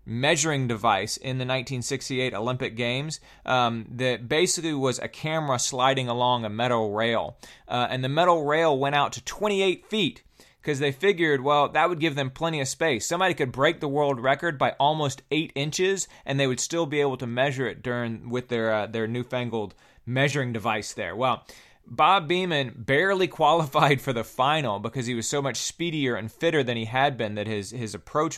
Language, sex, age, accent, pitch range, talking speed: English, male, 30-49, American, 120-150 Hz, 190 wpm